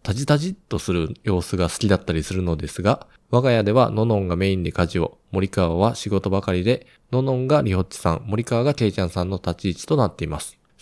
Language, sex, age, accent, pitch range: Japanese, male, 20-39, native, 95-120 Hz